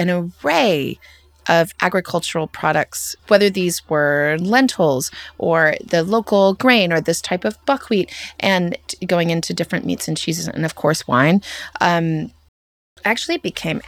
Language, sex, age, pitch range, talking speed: English, female, 30-49, 155-190 Hz, 140 wpm